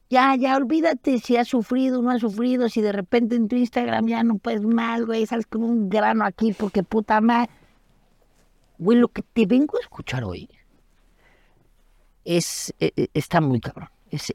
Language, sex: Spanish, female